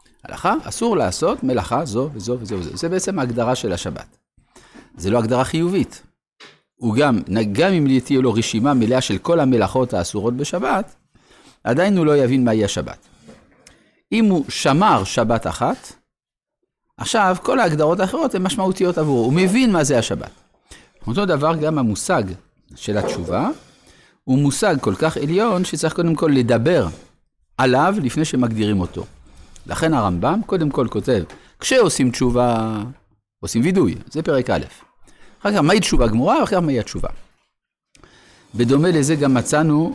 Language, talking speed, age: Hebrew, 145 wpm, 50-69